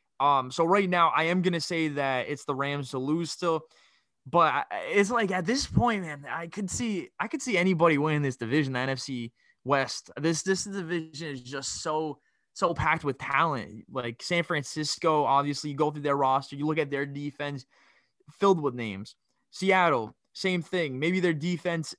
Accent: American